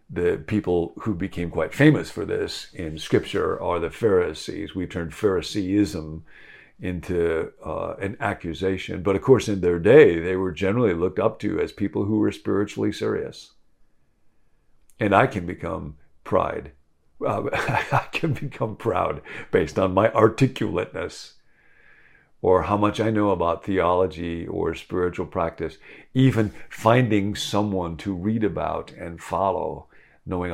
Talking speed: 140 wpm